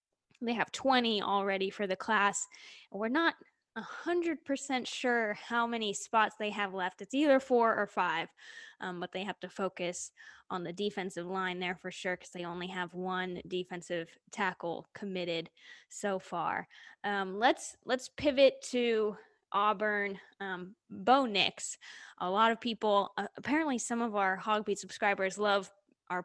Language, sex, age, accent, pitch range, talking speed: English, female, 10-29, American, 190-235 Hz, 160 wpm